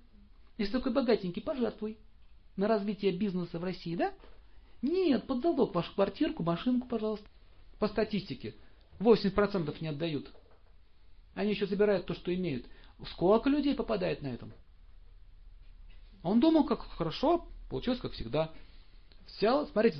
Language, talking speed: Russian, 125 wpm